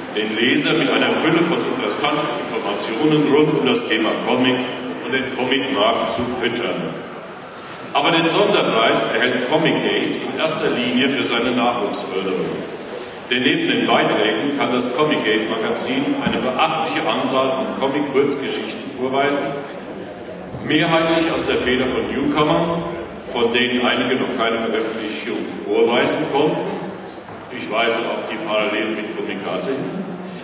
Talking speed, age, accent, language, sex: 125 wpm, 50-69, German, German, male